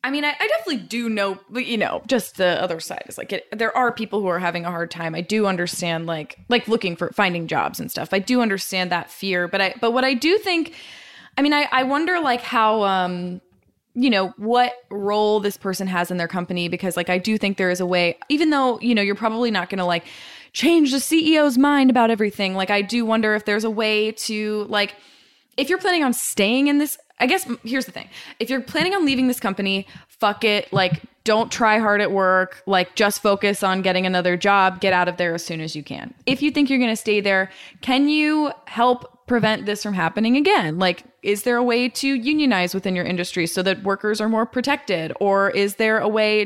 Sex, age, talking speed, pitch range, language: female, 20-39, 235 wpm, 190-250 Hz, English